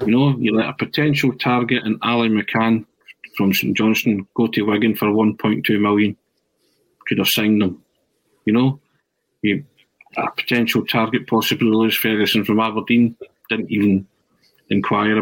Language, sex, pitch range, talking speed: English, male, 110-145 Hz, 155 wpm